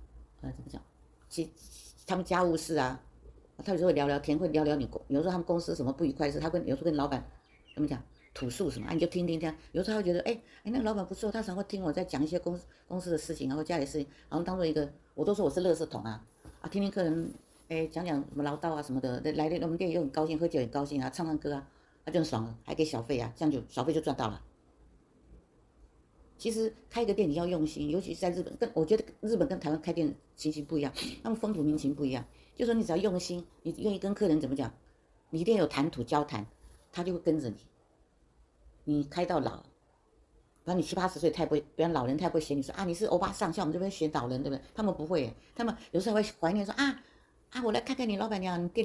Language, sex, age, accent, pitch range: Chinese, female, 50-69, American, 140-185 Hz